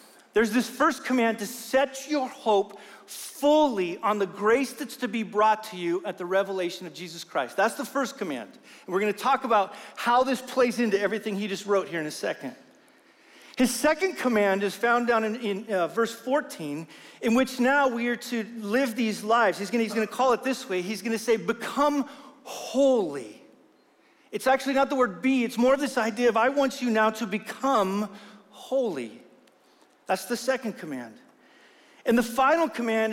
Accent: American